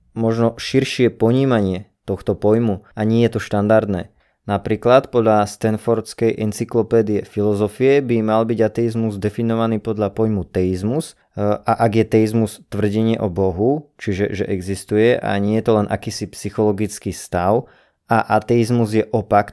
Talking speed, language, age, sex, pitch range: 135 wpm, Slovak, 20-39, male, 105-130 Hz